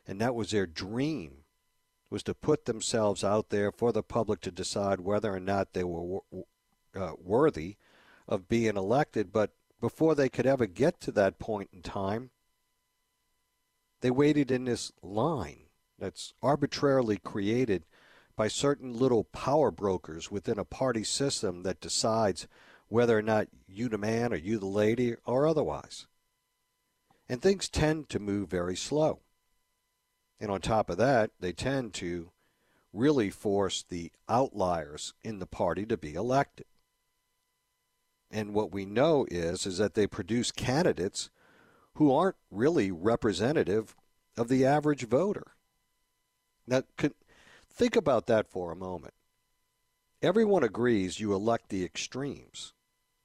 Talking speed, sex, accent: 140 wpm, male, American